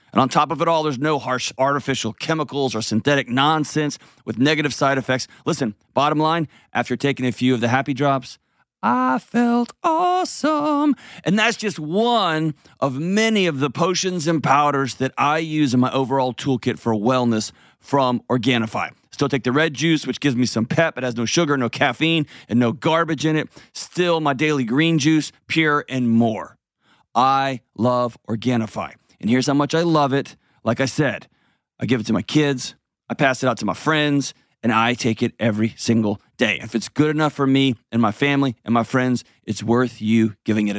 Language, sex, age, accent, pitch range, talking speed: English, male, 40-59, American, 120-155 Hz, 195 wpm